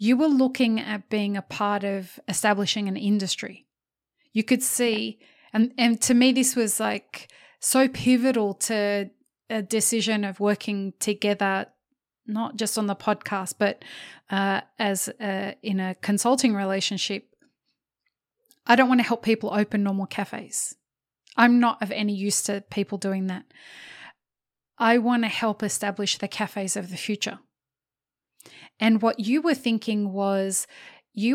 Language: English